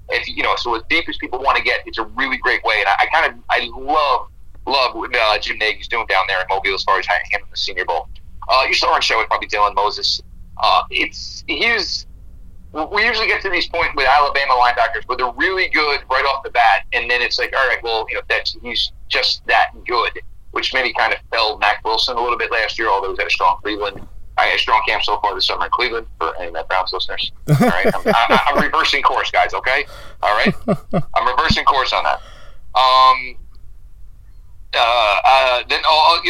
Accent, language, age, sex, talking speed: American, English, 30-49, male, 230 wpm